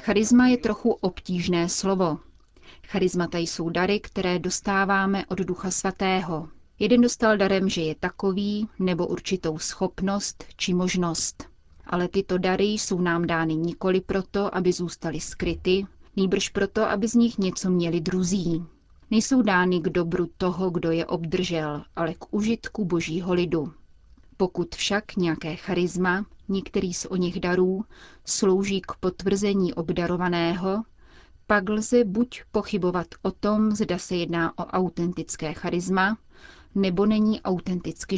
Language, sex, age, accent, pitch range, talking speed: Czech, female, 30-49, native, 175-200 Hz, 130 wpm